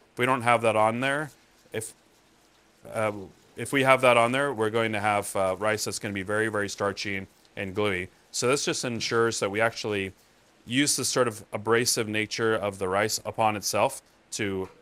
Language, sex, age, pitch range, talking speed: English, male, 30-49, 95-115 Hz, 200 wpm